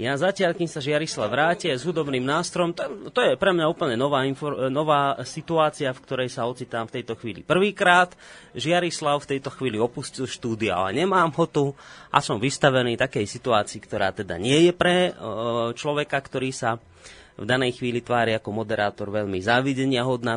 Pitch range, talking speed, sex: 115-150 Hz, 175 wpm, male